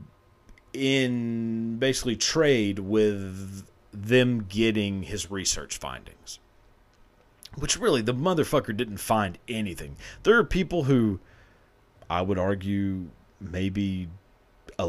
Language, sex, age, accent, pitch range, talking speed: English, male, 40-59, American, 95-125 Hz, 100 wpm